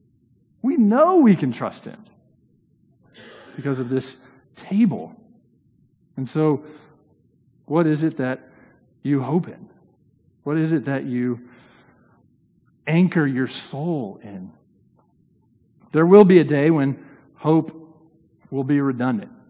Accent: American